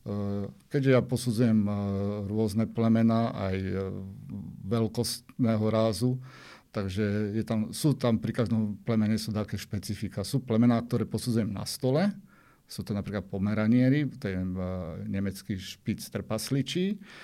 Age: 50-69